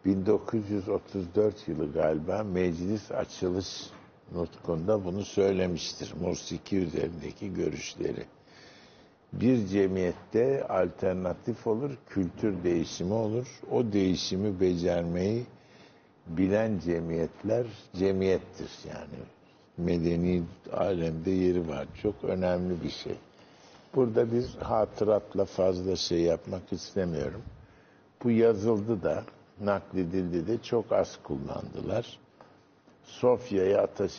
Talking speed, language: 85 wpm, Turkish